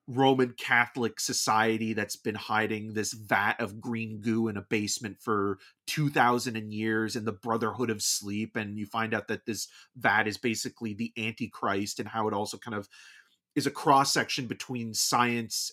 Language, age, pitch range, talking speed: English, 30-49, 110-130 Hz, 170 wpm